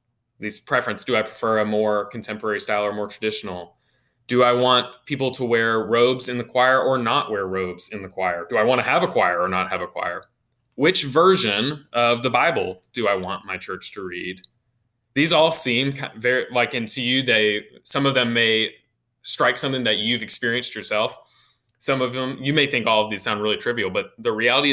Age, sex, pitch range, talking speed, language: 20-39, male, 105-130 Hz, 210 wpm, English